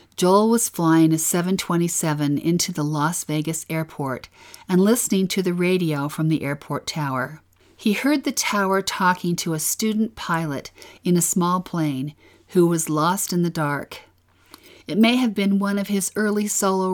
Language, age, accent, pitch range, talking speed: English, 50-69, American, 155-195 Hz, 165 wpm